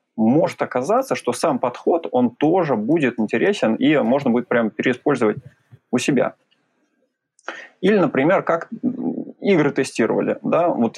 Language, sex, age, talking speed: Russian, male, 20-39, 125 wpm